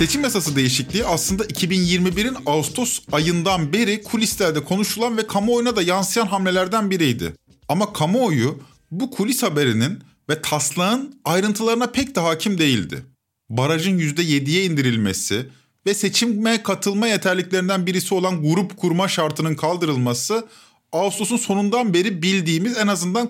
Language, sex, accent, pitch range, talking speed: Turkish, male, native, 145-210 Hz, 120 wpm